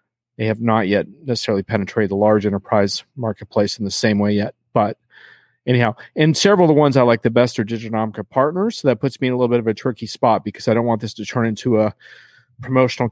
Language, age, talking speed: English, 40-59, 235 wpm